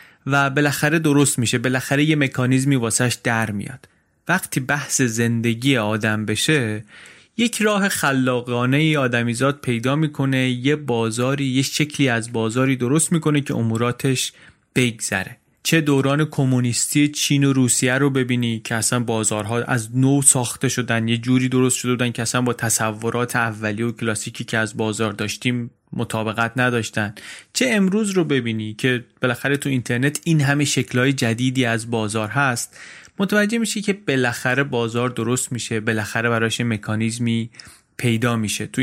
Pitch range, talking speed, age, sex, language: 115-140 Hz, 145 wpm, 30-49, male, Persian